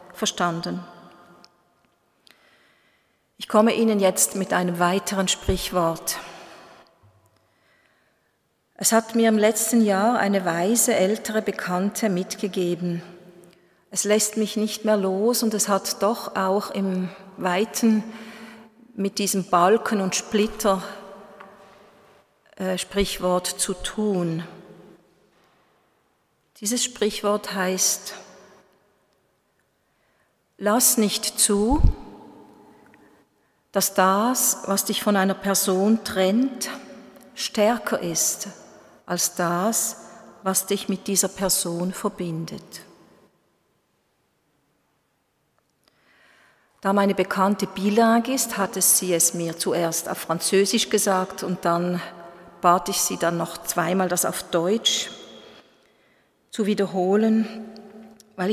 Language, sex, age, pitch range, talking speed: German, female, 40-59, 180-215 Hz, 95 wpm